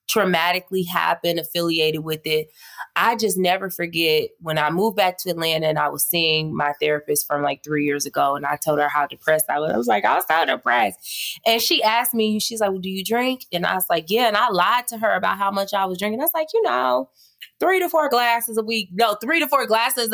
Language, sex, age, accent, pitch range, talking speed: English, female, 20-39, American, 155-220 Hz, 245 wpm